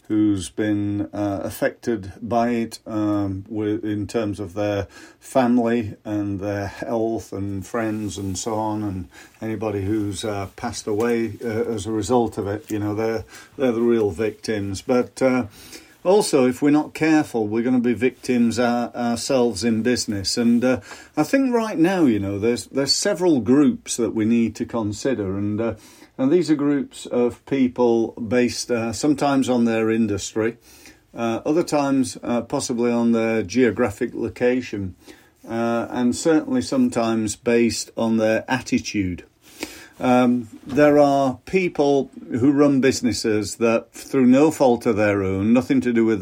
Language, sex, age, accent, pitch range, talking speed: English, male, 50-69, British, 105-125 Hz, 155 wpm